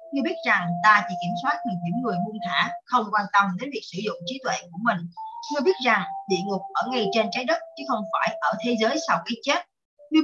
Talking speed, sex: 260 wpm, female